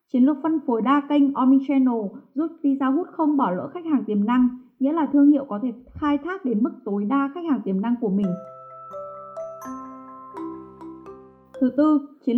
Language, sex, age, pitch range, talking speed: Vietnamese, female, 20-39, 225-285 Hz, 190 wpm